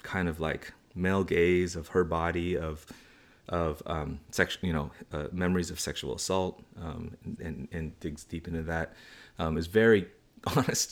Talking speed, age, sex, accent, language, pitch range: 170 wpm, 30-49, male, American, English, 80-95 Hz